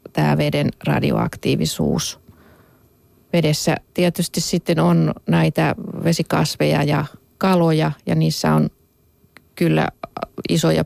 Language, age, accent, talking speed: Finnish, 30-49, native, 90 wpm